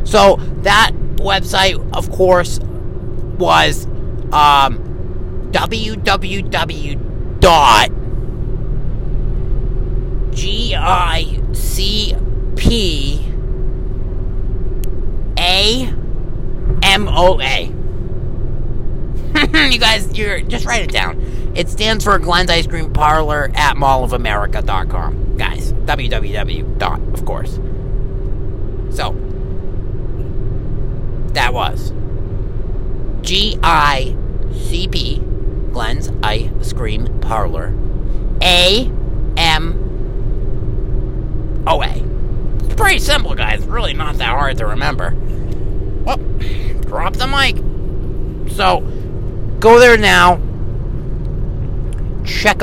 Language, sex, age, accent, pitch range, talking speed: English, male, 40-59, American, 100-125 Hz, 85 wpm